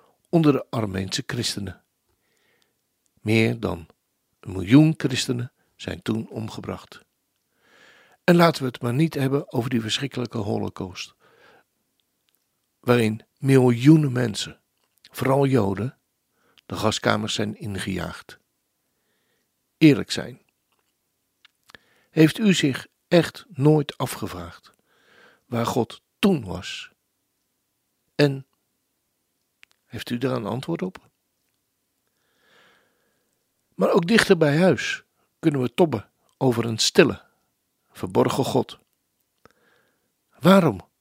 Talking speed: 95 wpm